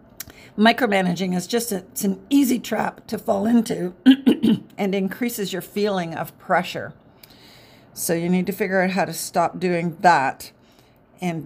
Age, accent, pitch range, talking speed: 50-69, American, 175-210 Hz, 150 wpm